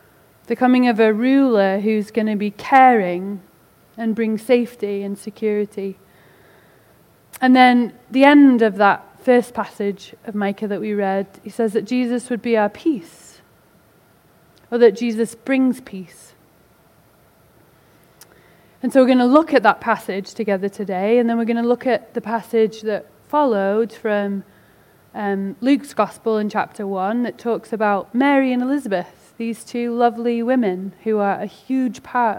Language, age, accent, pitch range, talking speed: English, 30-49, British, 205-245 Hz, 155 wpm